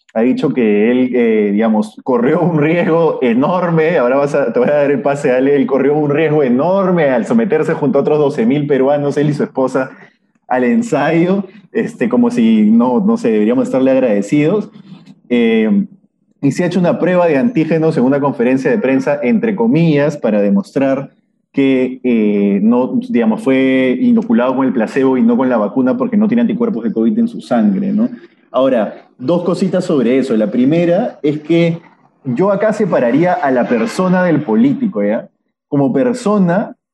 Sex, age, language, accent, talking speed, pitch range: male, 20-39, Spanish, Argentinian, 180 wpm, 140-230 Hz